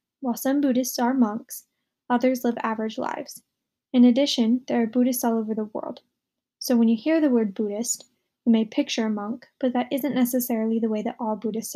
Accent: American